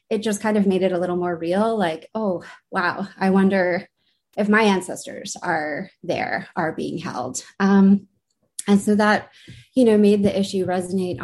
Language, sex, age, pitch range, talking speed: English, female, 20-39, 185-220 Hz, 170 wpm